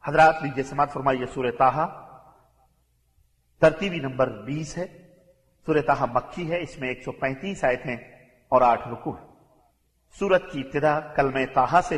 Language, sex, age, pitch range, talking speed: English, male, 50-69, 135-165 Hz, 150 wpm